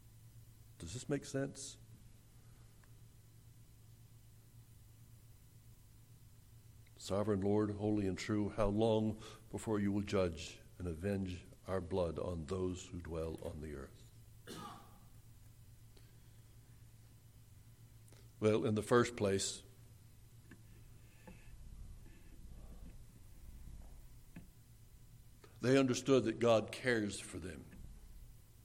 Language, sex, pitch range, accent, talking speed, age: English, male, 105-115 Hz, American, 80 wpm, 60-79